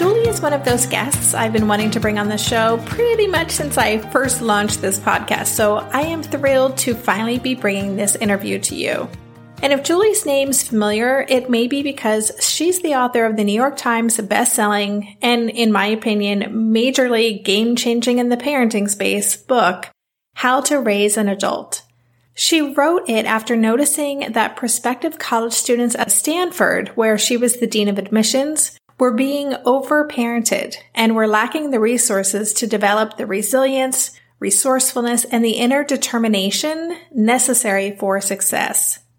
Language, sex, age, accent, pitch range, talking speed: English, female, 30-49, American, 210-270 Hz, 160 wpm